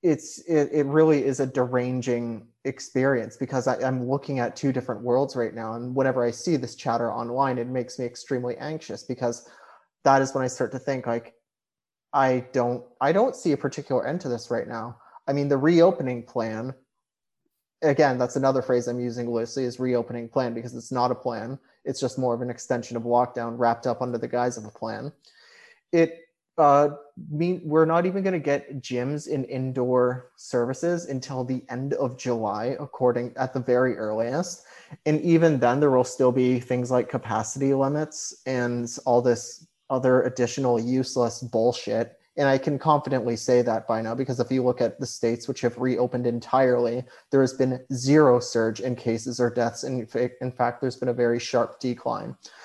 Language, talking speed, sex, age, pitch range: English, 185 wpm, male, 30-49, 120-140 Hz